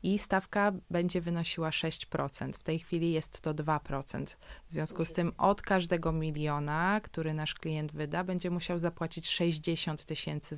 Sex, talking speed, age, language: female, 155 wpm, 20-39, Polish